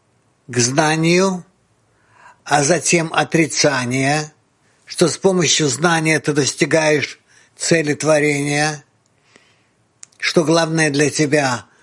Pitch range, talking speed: 120-155 Hz, 85 wpm